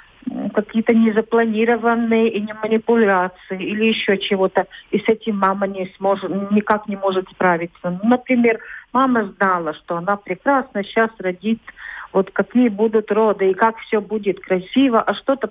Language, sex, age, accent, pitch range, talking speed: Russian, female, 50-69, native, 190-245 Hz, 145 wpm